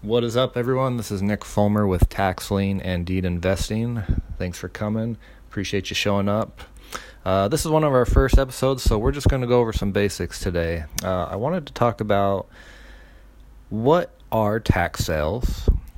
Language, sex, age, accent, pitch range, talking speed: English, male, 30-49, American, 85-110 Hz, 180 wpm